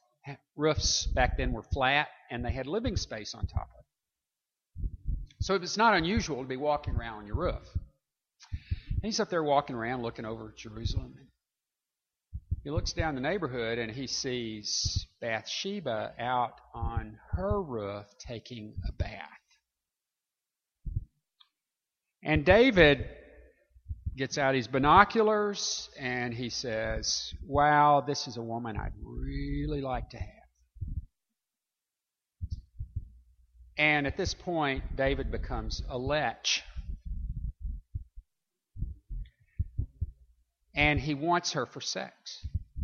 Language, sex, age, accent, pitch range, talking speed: English, male, 50-69, American, 90-150 Hz, 115 wpm